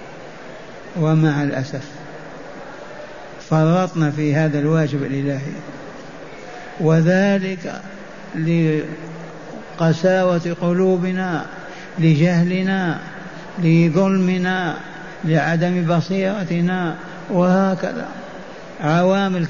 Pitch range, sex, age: 150-180 Hz, male, 60-79